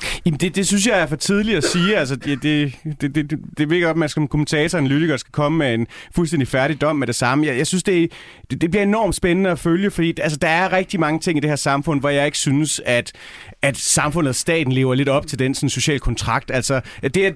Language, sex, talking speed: Danish, male, 265 wpm